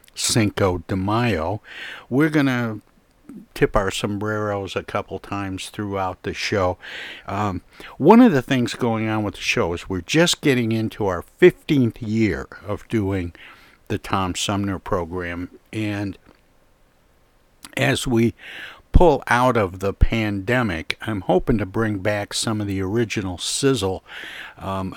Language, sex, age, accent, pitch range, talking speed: English, male, 60-79, American, 95-115 Hz, 140 wpm